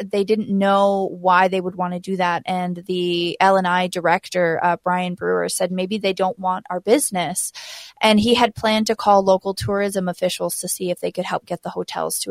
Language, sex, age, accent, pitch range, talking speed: English, female, 20-39, American, 180-205 Hz, 210 wpm